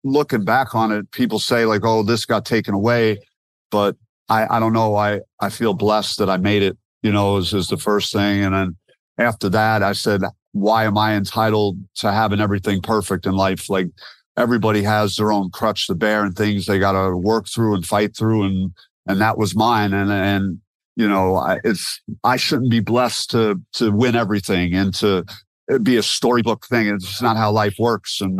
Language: English